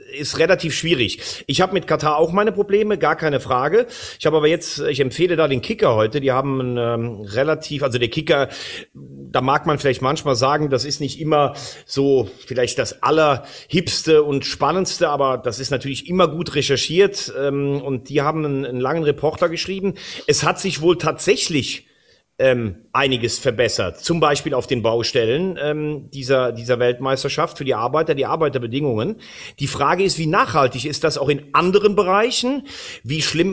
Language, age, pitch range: German, 40-59, 135-175 Hz